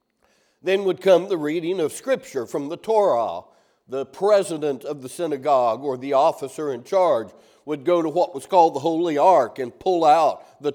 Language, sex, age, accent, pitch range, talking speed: English, male, 60-79, American, 145-200 Hz, 185 wpm